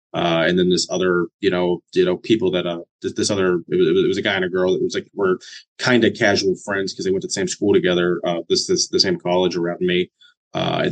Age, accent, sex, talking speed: 20-39, American, male, 270 wpm